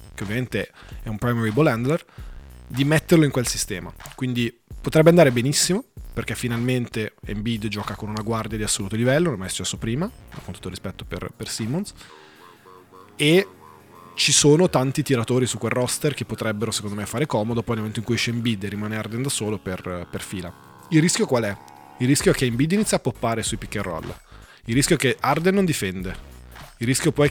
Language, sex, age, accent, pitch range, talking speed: Italian, male, 20-39, native, 105-140 Hz, 210 wpm